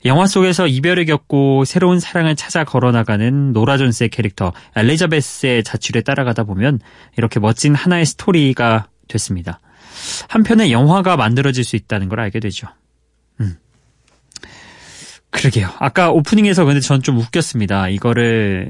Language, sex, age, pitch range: Korean, male, 20-39, 110-150 Hz